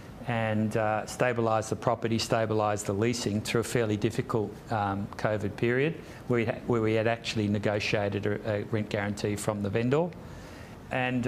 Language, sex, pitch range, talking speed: English, male, 105-120 Hz, 150 wpm